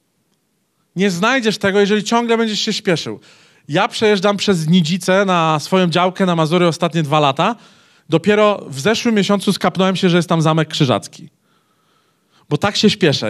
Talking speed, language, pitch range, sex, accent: 160 wpm, Polish, 155-200 Hz, male, native